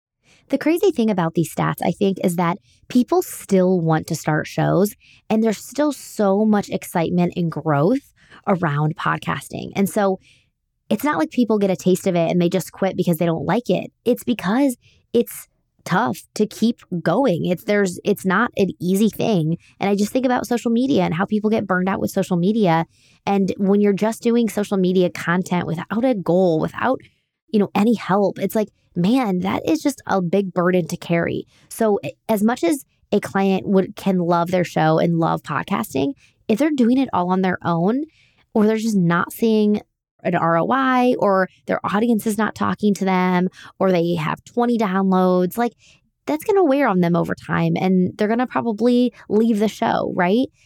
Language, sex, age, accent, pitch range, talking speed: English, female, 20-39, American, 175-225 Hz, 195 wpm